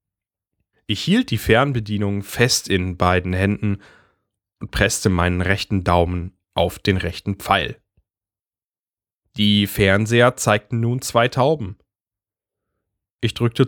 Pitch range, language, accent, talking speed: 95-125 Hz, German, German, 110 wpm